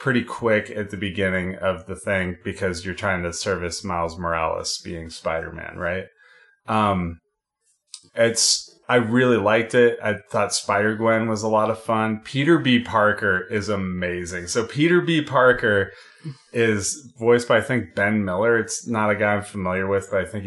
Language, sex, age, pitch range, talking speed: English, male, 30-49, 95-120 Hz, 170 wpm